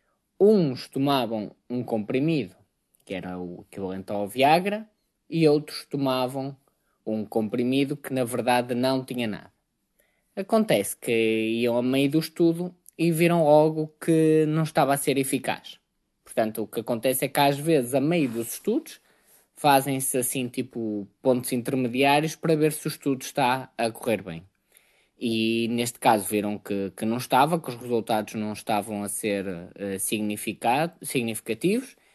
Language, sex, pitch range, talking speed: Portuguese, male, 115-165 Hz, 145 wpm